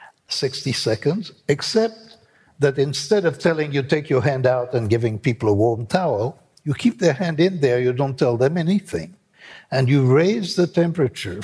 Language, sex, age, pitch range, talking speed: English, male, 60-79, 125-165 Hz, 180 wpm